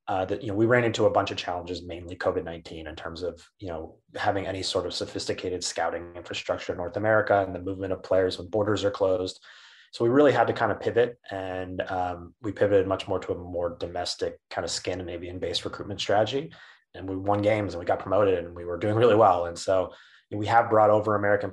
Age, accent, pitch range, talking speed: 30-49, American, 85-105 Hz, 235 wpm